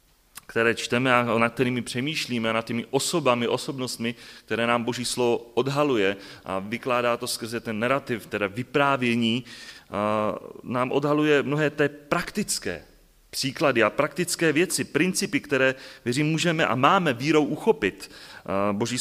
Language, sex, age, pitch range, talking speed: Czech, male, 30-49, 115-140 Hz, 135 wpm